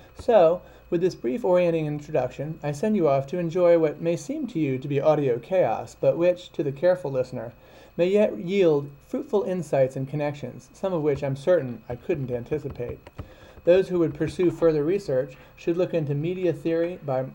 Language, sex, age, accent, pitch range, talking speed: English, male, 30-49, American, 130-165 Hz, 185 wpm